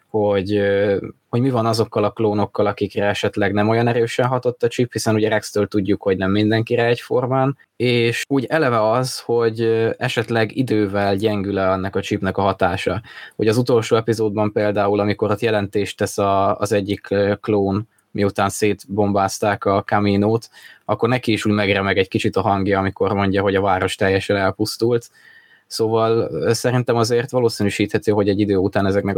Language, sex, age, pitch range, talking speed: Hungarian, male, 20-39, 100-110 Hz, 160 wpm